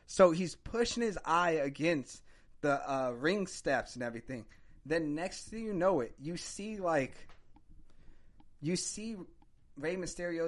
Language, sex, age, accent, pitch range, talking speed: English, male, 20-39, American, 140-190 Hz, 145 wpm